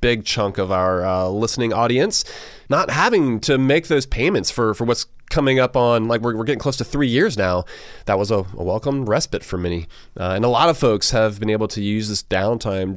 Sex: male